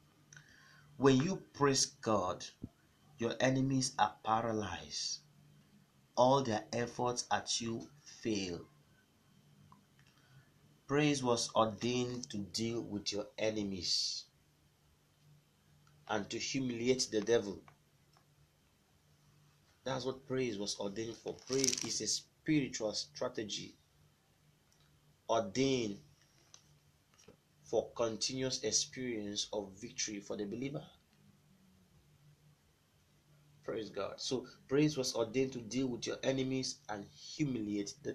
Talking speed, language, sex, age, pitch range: 95 wpm, English, male, 30-49, 110-140 Hz